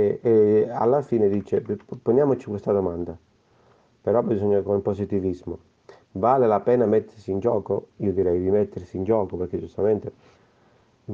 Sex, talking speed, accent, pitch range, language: male, 140 wpm, native, 100-125 Hz, Italian